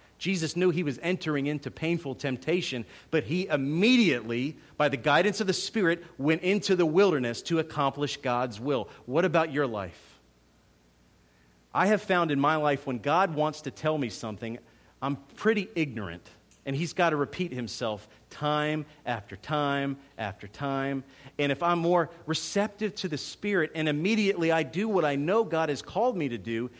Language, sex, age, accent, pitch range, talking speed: English, male, 40-59, American, 120-185 Hz, 170 wpm